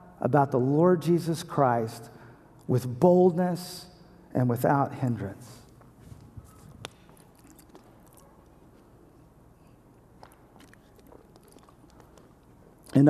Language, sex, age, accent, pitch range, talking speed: English, male, 50-69, American, 140-170 Hz, 50 wpm